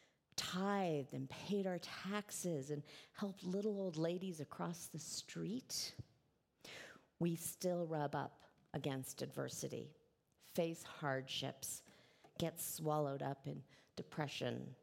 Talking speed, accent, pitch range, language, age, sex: 105 wpm, American, 140-175 Hz, English, 50-69, female